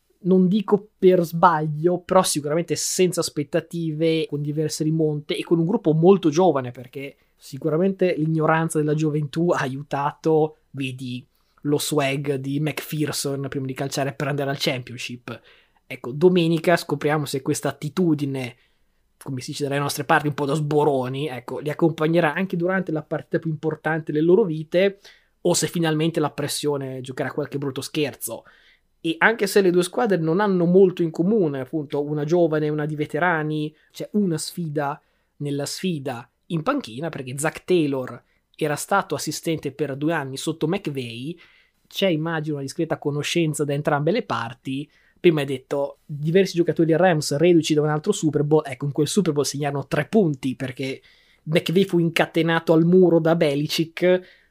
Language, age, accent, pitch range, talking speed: Italian, 20-39, native, 145-170 Hz, 165 wpm